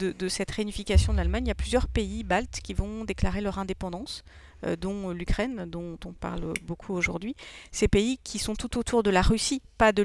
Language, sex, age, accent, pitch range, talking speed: French, female, 40-59, French, 185-220 Hz, 220 wpm